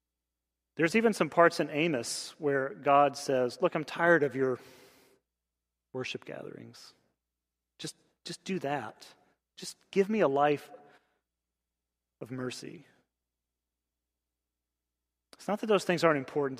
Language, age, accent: English, 30-49, American